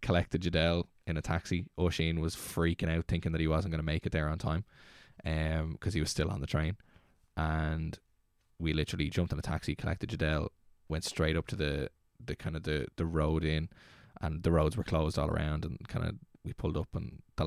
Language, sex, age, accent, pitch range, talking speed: English, male, 10-29, Irish, 80-90 Hz, 220 wpm